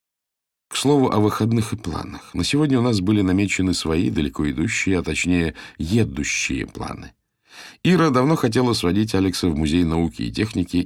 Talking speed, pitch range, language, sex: 160 wpm, 85-115 Hz, Russian, male